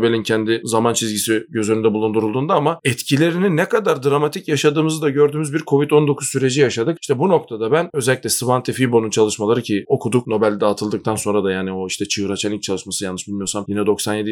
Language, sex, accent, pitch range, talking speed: Turkish, male, native, 110-145 Hz, 185 wpm